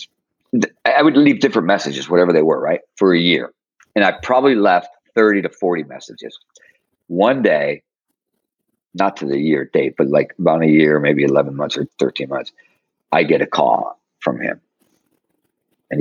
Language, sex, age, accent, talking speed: English, male, 50-69, American, 170 wpm